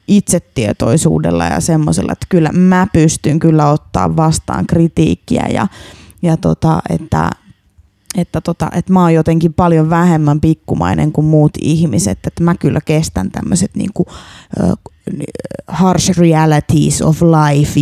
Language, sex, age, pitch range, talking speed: Finnish, female, 20-39, 145-175 Hz, 130 wpm